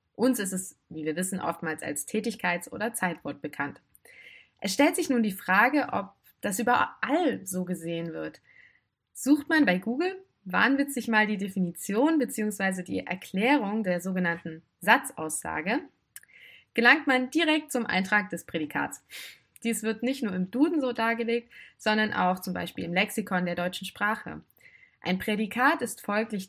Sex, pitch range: female, 175-235 Hz